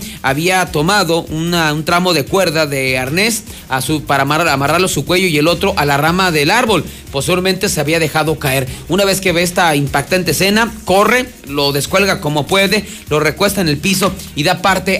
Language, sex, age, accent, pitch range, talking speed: Spanish, male, 40-59, Mexican, 160-200 Hz, 200 wpm